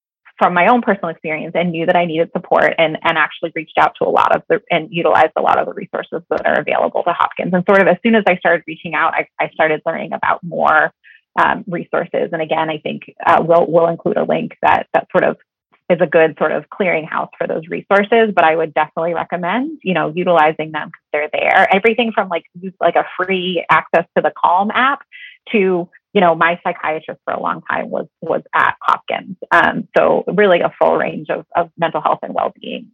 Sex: female